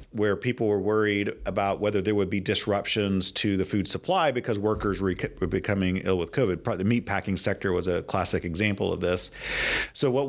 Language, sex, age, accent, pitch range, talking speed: English, male, 40-59, American, 100-130 Hz, 195 wpm